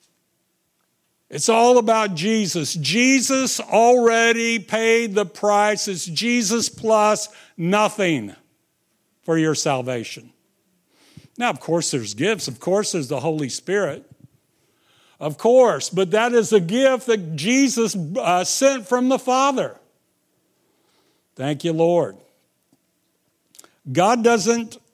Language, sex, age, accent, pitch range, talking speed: English, male, 60-79, American, 155-215 Hz, 110 wpm